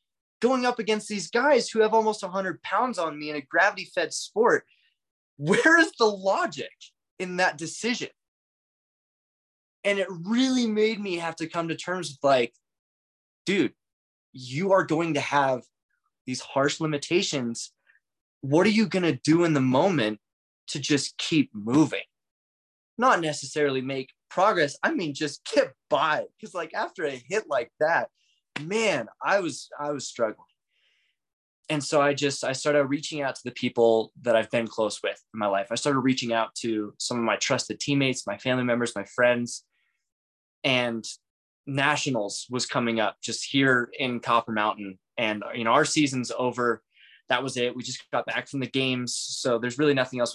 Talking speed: 170 wpm